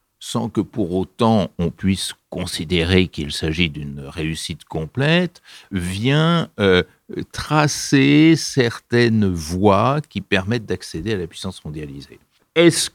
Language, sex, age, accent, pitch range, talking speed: French, male, 60-79, French, 80-130 Hz, 115 wpm